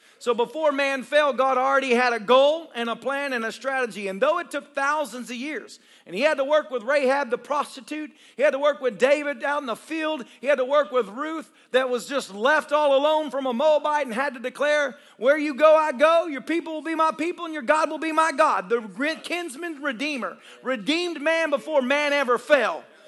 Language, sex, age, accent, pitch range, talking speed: English, male, 40-59, American, 270-330 Hz, 225 wpm